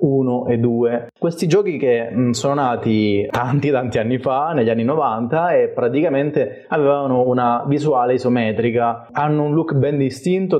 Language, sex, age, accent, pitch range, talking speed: Italian, male, 20-39, native, 120-140 Hz, 145 wpm